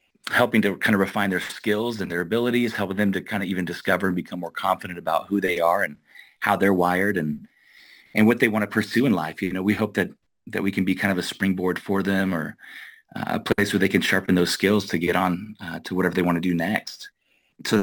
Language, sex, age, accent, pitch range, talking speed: English, male, 30-49, American, 90-110 Hz, 250 wpm